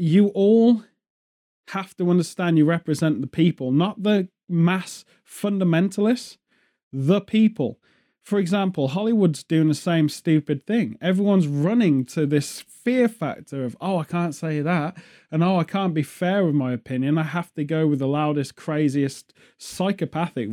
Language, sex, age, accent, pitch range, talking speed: English, male, 30-49, British, 150-205 Hz, 155 wpm